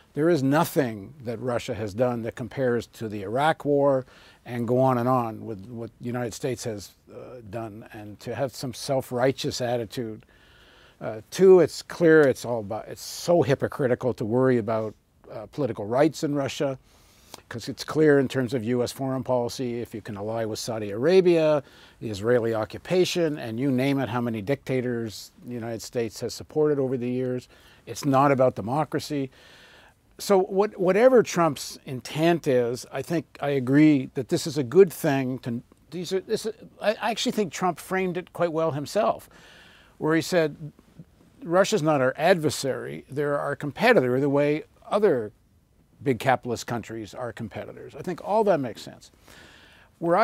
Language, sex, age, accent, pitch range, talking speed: English, male, 50-69, American, 120-160 Hz, 170 wpm